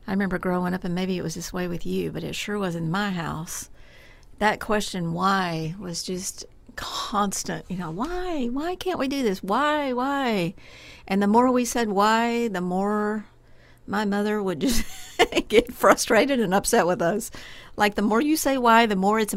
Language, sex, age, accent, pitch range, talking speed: English, female, 50-69, American, 180-220 Hz, 190 wpm